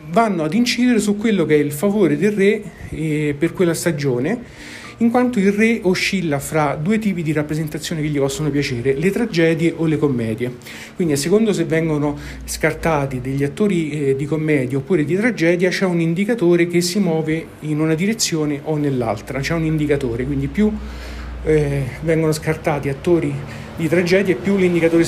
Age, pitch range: 50-69, 145-175 Hz